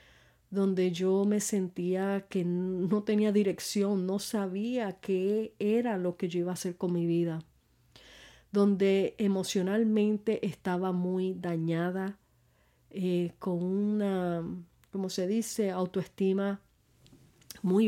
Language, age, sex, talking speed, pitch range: Spanish, 40-59, female, 115 wpm, 180-215 Hz